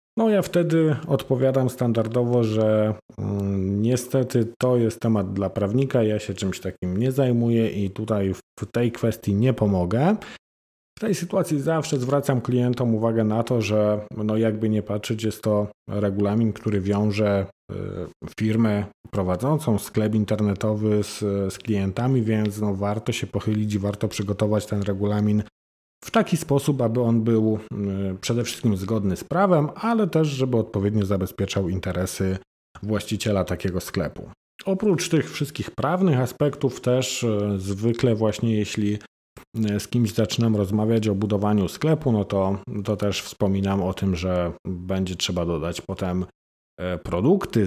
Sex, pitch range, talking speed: male, 100-125 Hz, 140 wpm